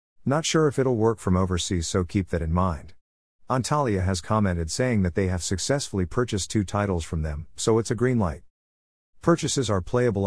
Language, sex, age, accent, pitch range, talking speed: English, male, 50-69, American, 85-115 Hz, 195 wpm